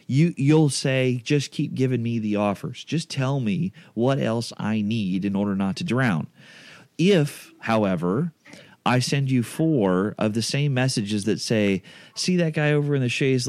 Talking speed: 180 wpm